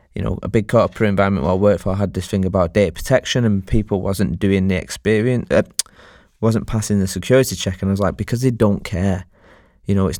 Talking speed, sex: 235 wpm, male